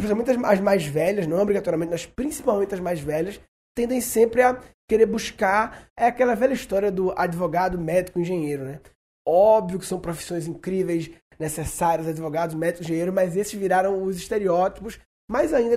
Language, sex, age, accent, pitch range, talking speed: Portuguese, male, 20-39, Brazilian, 175-225 Hz, 150 wpm